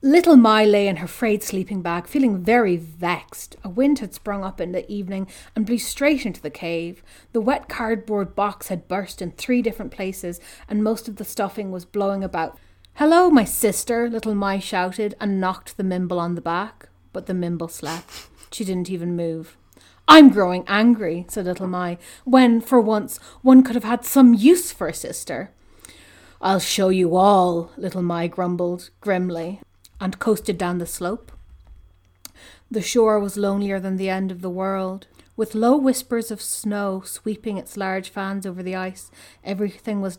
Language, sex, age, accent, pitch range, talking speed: English, female, 30-49, Irish, 175-215 Hz, 180 wpm